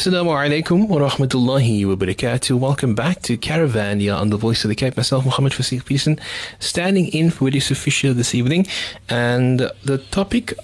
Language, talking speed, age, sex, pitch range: English, 170 wpm, 30-49, male, 110-135 Hz